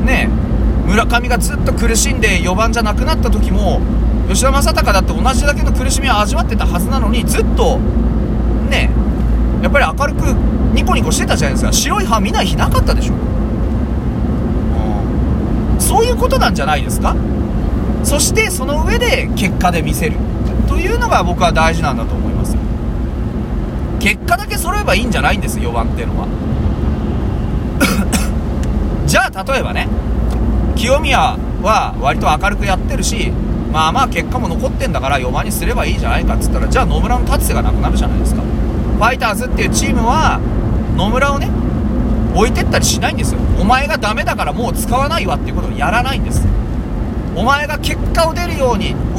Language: Japanese